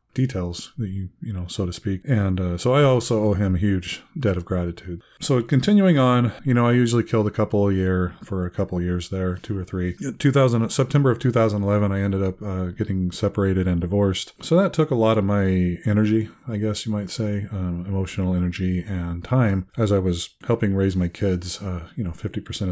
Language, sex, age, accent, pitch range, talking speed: English, male, 20-39, American, 95-115 Hz, 215 wpm